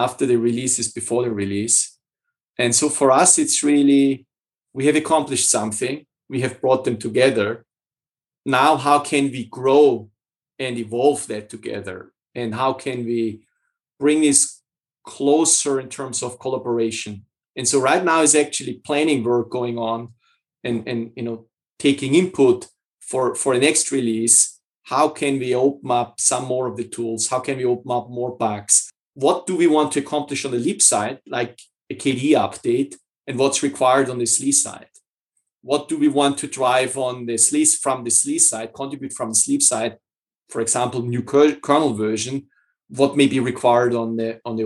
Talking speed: 175 wpm